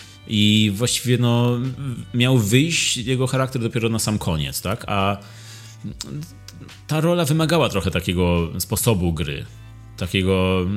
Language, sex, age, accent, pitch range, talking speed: Polish, male, 30-49, native, 95-120 Hz, 115 wpm